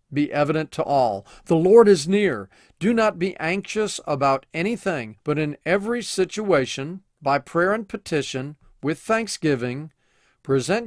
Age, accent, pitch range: 40-59, American, 140-200 Hz